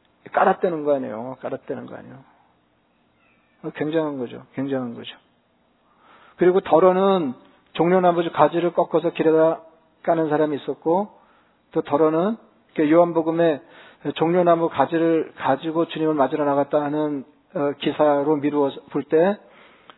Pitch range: 150-175 Hz